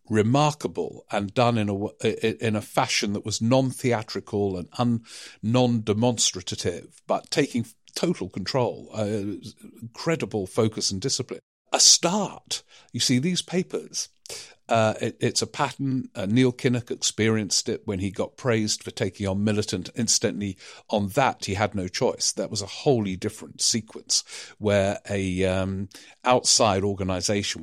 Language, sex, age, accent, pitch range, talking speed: English, male, 50-69, British, 95-115 Hz, 130 wpm